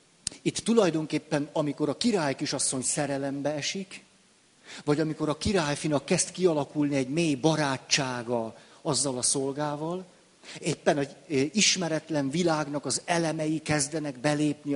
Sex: male